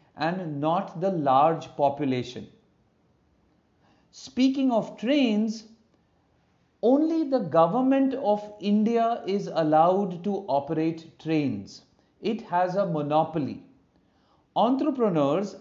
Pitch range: 155-215 Hz